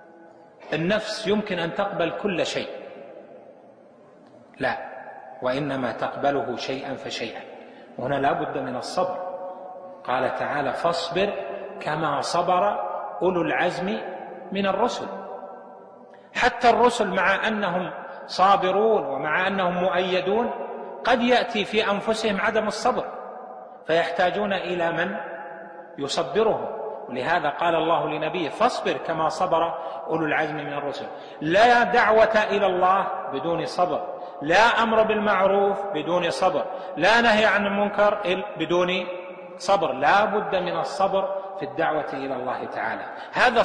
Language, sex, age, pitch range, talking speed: Arabic, male, 30-49, 170-210 Hz, 110 wpm